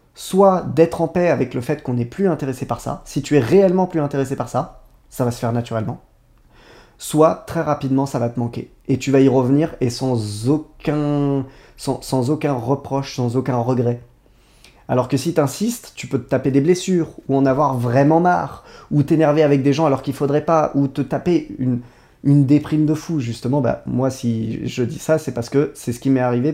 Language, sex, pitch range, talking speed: French, male, 130-160 Hz, 215 wpm